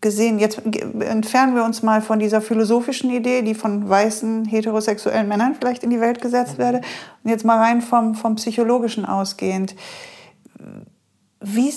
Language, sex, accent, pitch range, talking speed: German, female, German, 200-235 Hz, 155 wpm